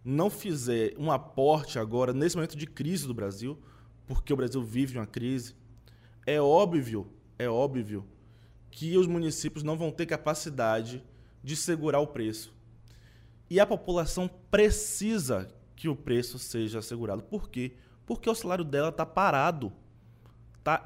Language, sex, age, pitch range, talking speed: Portuguese, male, 20-39, 115-170 Hz, 140 wpm